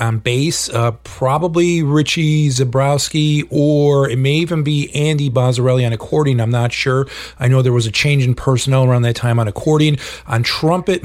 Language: English